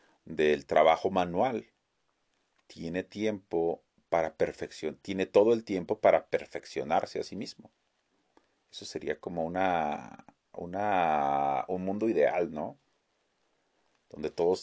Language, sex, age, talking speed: Spanish, male, 40-59, 110 wpm